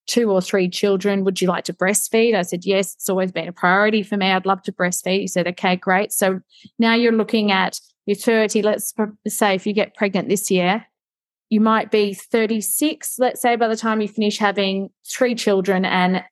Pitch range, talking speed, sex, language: 185-210 Hz, 210 wpm, female, English